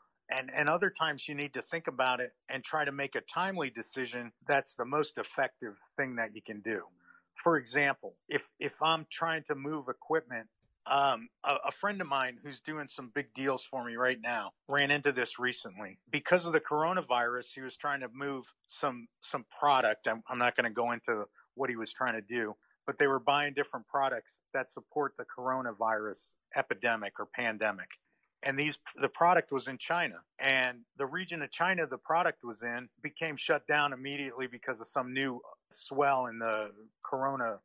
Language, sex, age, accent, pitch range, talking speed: English, male, 50-69, American, 125-150 Hz, 190 wpm